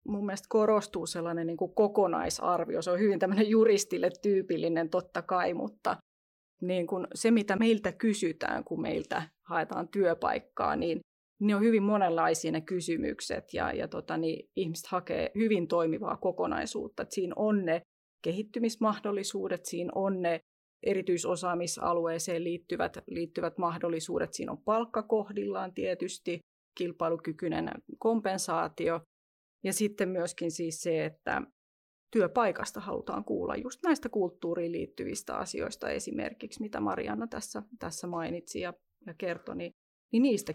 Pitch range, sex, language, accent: 170-215 Hz, female, Finnish, native